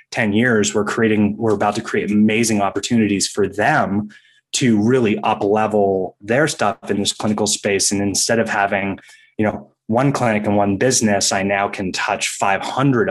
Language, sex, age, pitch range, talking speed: English, male, 20-39, 95-110 Hz, 175 wpm